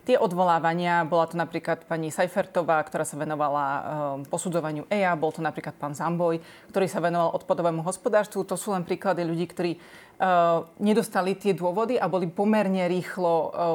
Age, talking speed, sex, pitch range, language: 30-49, 165 wpm, female, 170-195 Hz, Slovak